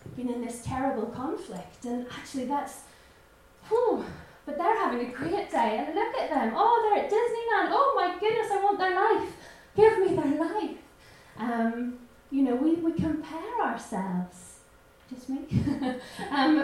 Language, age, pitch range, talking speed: English, 10-29, 230-385 Hz, 160 wpm